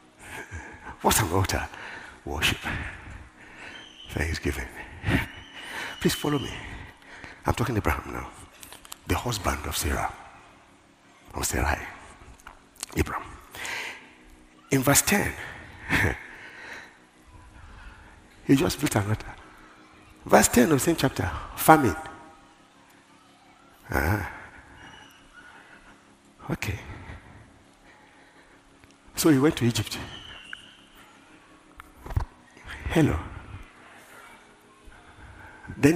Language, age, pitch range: English, 60-79, 70-105 Hz